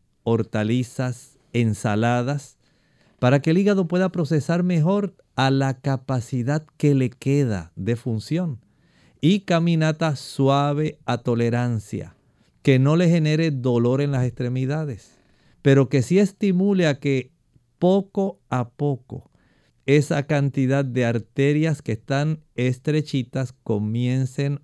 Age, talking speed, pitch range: 50-69, 115 wpm, 125-150 Hz